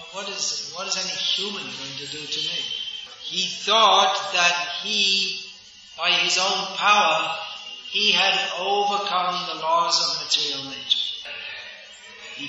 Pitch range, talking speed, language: 155-190 Hz, 130 wpm, English